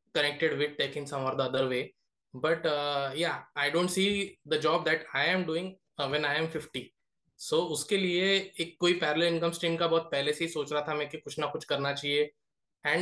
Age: 20-39